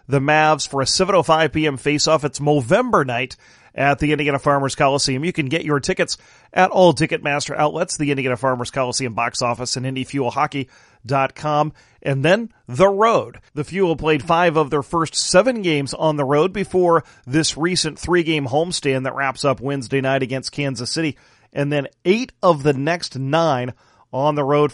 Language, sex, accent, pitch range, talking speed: English, male, American, 140-160 Hz, 170 wpm